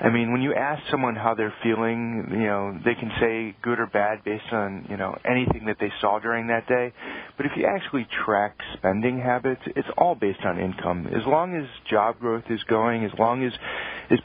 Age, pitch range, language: 40-59, 105-115 Hz, English